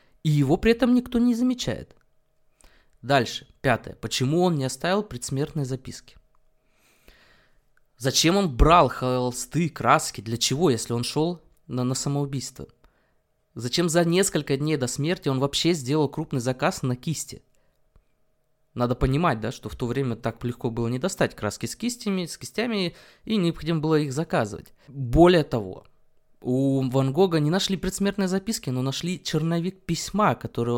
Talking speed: 145 wpm